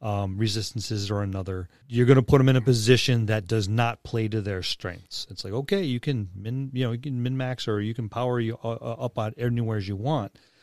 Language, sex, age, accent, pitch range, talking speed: English, male, 40-59, American, 105-130 Hz, 235 wpm